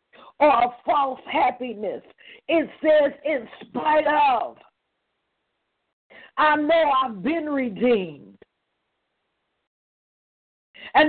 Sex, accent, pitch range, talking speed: female, American, 280-335 Hz, 80 wpm